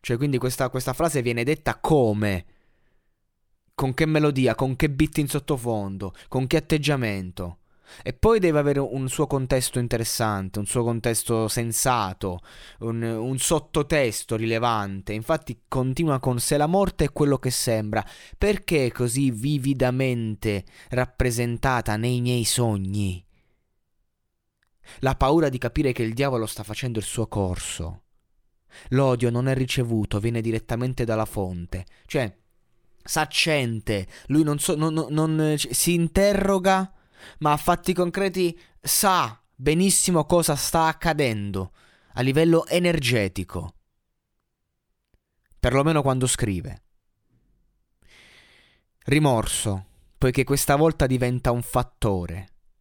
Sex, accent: male, native